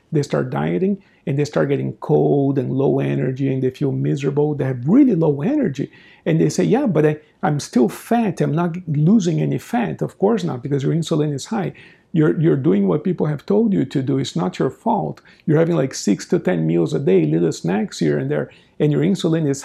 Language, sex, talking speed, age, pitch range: English, male, 225 wpm, 50-69, 135-180 Hz